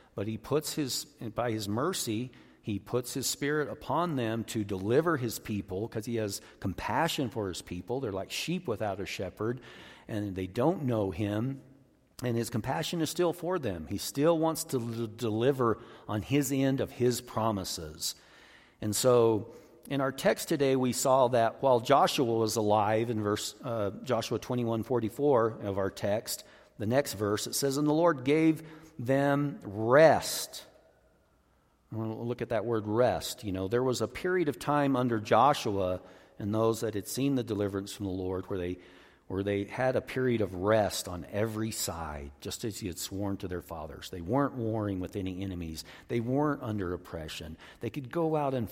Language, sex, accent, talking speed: English, male, American, 185 wpm